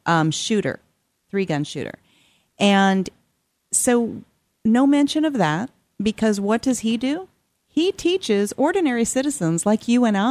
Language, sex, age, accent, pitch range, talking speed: English, female, 40-59, American, 160-225 Hz, 135 wpm